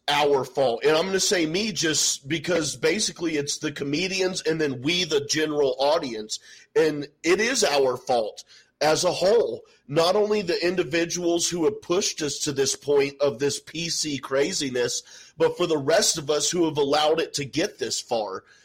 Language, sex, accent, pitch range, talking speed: English, male, American, 140-185 Hz, 185 wpm